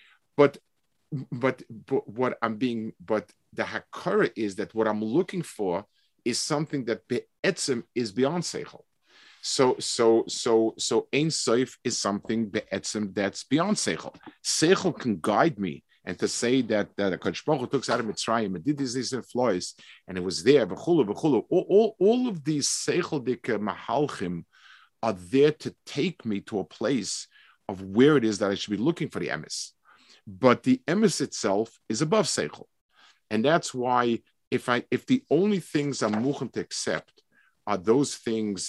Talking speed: 170 wpm